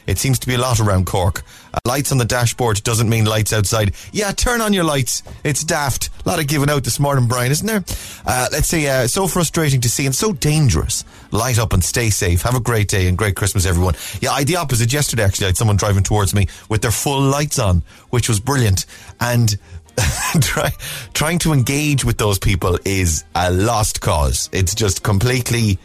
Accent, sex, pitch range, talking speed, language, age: Irish, male, 105-145 Hz, 210 wpm, English, 30-49